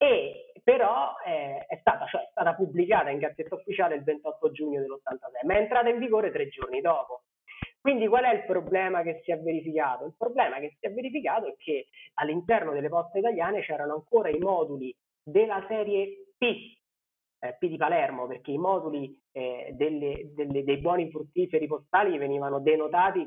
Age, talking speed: 30-49, 175 wpm